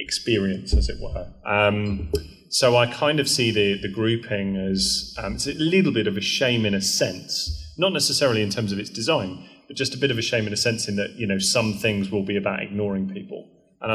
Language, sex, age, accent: English, male, 30-49, British